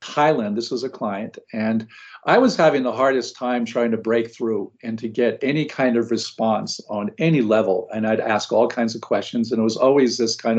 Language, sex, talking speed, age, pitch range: English, male, 220 wpm, 50-69, 115-170 Hz